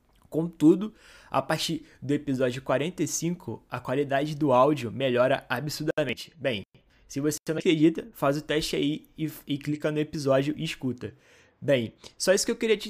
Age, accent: 20-39, Brazilian